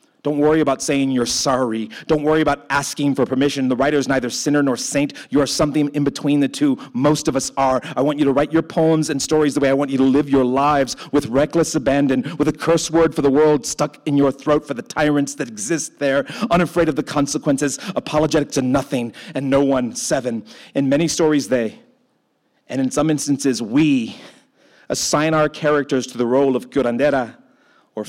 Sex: male